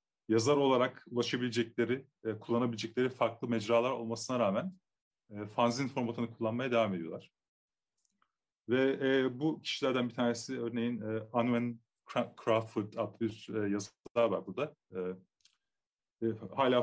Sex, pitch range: male, 110-125 Hz